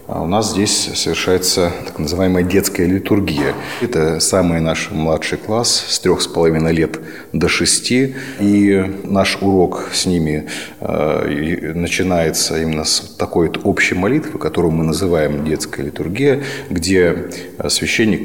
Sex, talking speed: male, 125 wpm